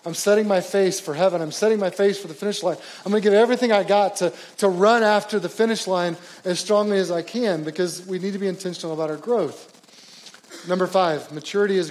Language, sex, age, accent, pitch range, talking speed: English, male, 30-49, American, 165-200 Hz, 225 wpm